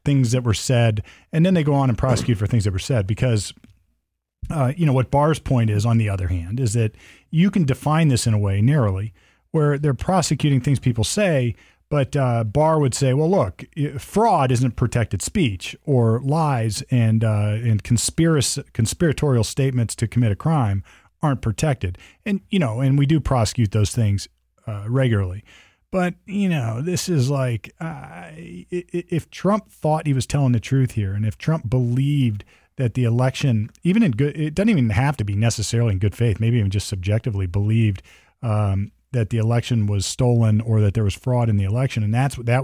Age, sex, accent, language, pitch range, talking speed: 40-59, male, American, English, 105-140 Hz, 195 wpm